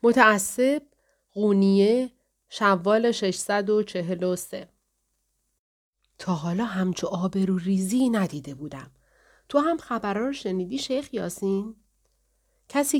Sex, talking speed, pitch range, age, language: female, 90 wpm, 175-230 Hz, 40-59, Persian